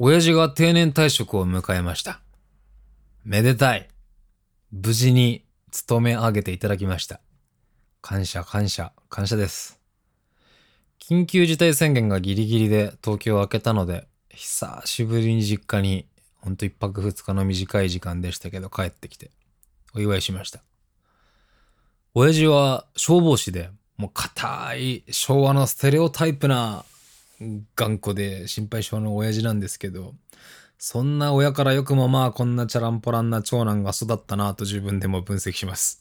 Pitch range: 95-125 Hz